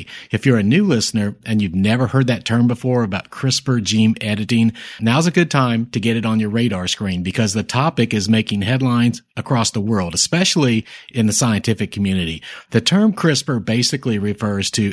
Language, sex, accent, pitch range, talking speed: English, male, American, 105-130 Hz, 190 wpm